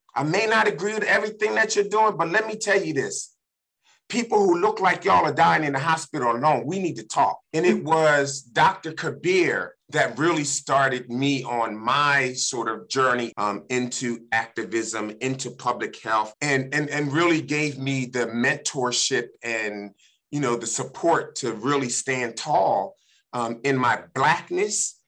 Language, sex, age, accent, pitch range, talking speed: English, male, 30-49, American, 120-160 Hz, 170 wpm